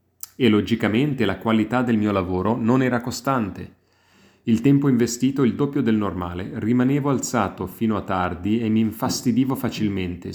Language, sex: English, male